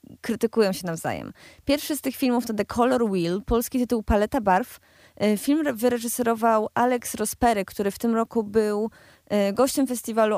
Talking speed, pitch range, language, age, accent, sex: 150 wpm, 205-255 Hz, Polish, 20-39, native, female